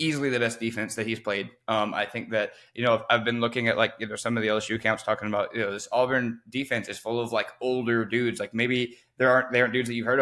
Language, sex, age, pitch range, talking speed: English, male, 10-29, 115-135 Hz, 290 wpm